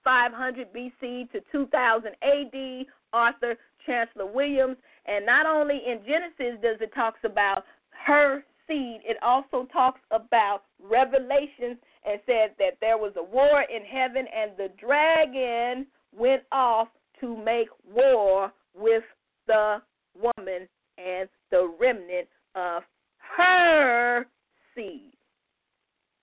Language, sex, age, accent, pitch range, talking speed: English, female, 40-59, American, 225-280 Hz, 115 wpm